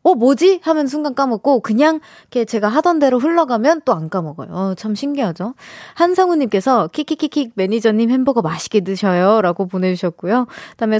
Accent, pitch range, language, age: native, 205-315 Hz, Korean, 20-39